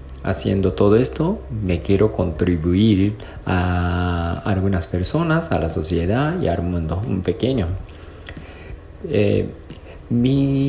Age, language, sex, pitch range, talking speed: 40-59, Spanish, male, 85-105 Hz, 105 wpm